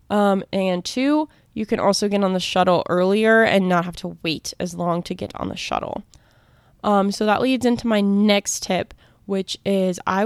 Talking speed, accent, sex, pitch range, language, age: 200 wpm, American, female, 180-210 Hz, English, 20-39